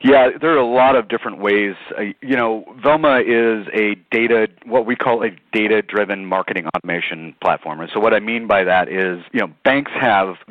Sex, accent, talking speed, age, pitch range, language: male, American, 195 wpm, 30-49, 95-110 Hz, English